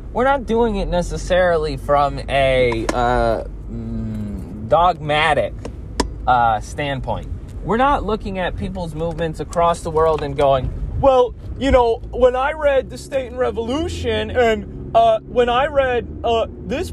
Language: English